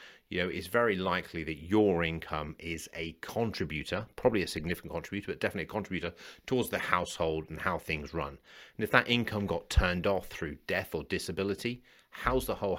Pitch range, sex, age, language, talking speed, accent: 80-100 Hz, male, 30-49, English, 190 wpm, British